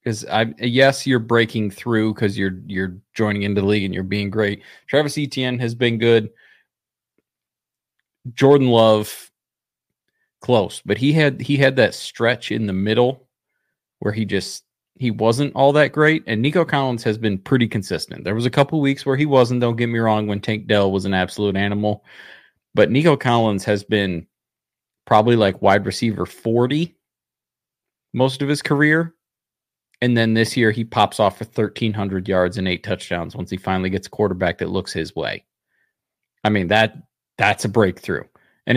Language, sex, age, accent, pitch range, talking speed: English, male, 30-49, American, 100-125 Hz, 175 wpm